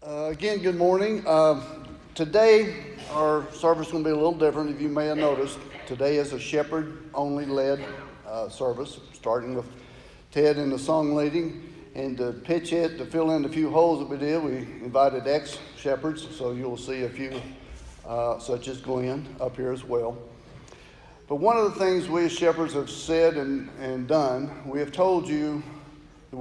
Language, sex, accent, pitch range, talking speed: English, male, American, 130-155 Hz, 180 wpm